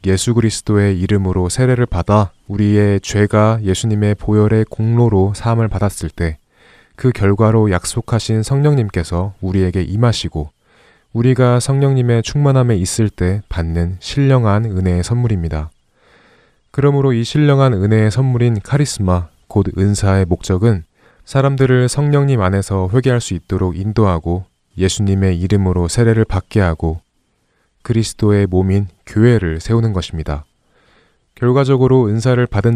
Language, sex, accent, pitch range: Korean, male, native, 95-120 Hz